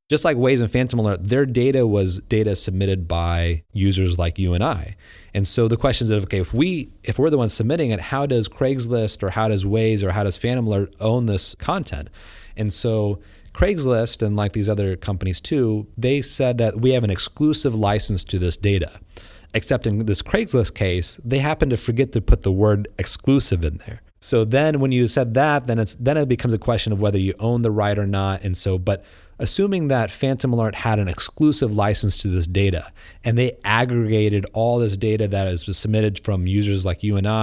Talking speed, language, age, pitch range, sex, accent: 210 wpm, English, 30-49, 95-120 Hz, male, American